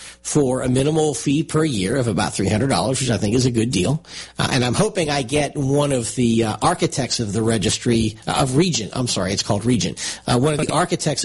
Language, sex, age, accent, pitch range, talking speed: English, male, 50-69, American, 115-145 Hz, 230 wpm